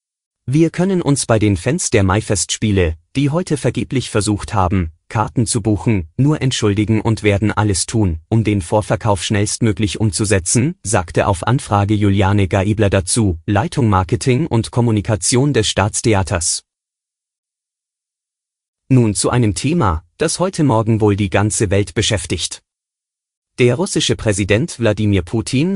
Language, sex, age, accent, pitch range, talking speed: German, male, 30-49, German, 100-120 Hz, 130 wpm